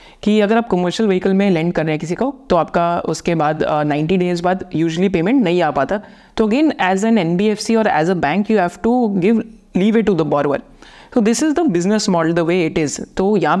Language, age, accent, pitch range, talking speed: Hindi, 30-49, native, 170-220 Hz, 245 wpm